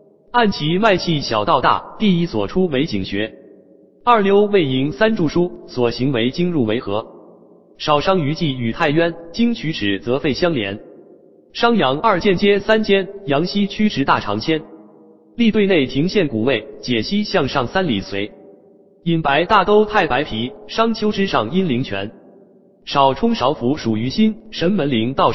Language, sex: Chinese, male